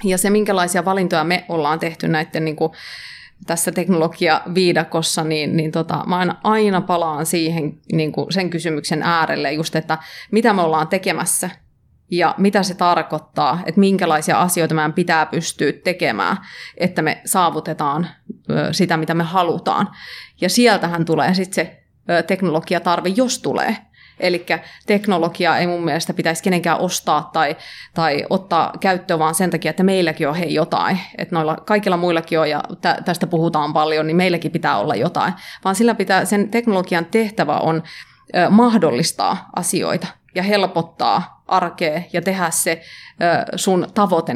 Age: 30-49